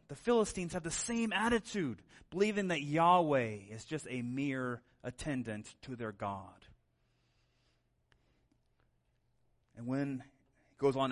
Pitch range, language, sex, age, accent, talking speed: 145-215 Hz, English, male, 30-49, American, 120 wpm